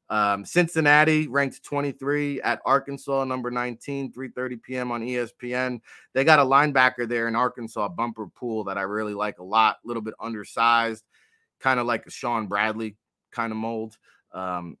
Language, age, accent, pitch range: English, 30-49, American, 110-140 Hz